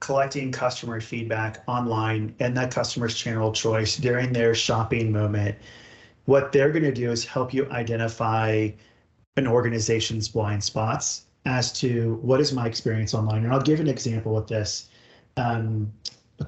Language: English